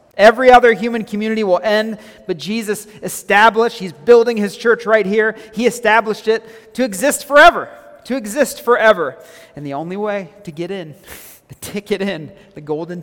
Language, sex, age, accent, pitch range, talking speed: English, male, 40-59, American, 150-200 Hz, 165 wpm